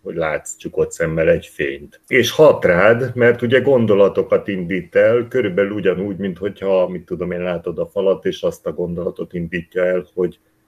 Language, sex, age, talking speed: Hungarian, male, 60-79, 170 wpm